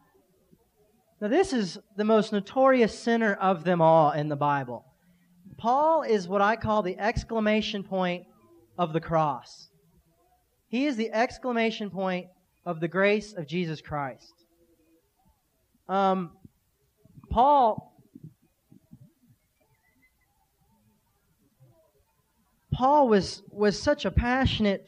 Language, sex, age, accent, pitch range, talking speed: English, male, 30-49, American, 165-230 Hz, 105 wpm